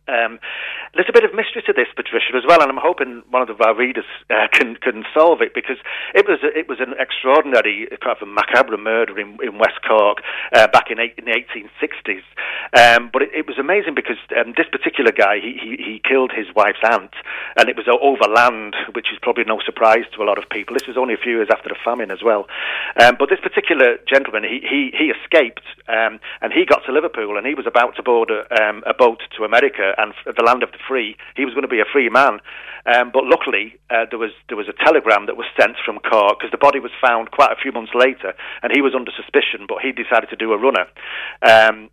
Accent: British